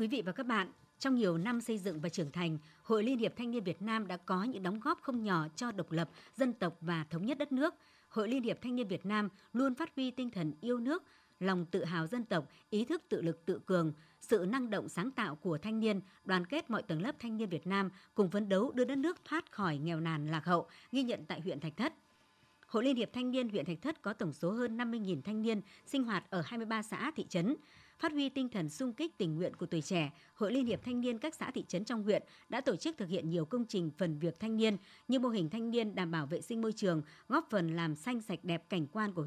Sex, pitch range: male, 175-245 Hz